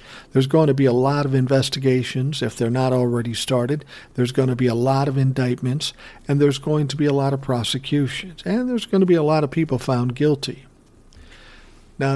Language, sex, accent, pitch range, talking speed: English, male, American, 125-145 Hz, 205 wpm